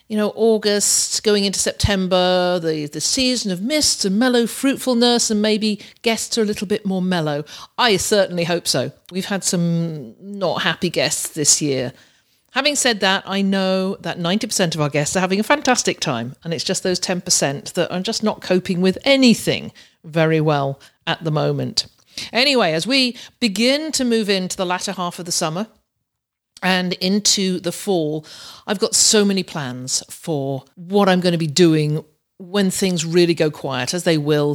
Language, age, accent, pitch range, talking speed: English, 50-69, British, 160-210 Hz, 180 wpm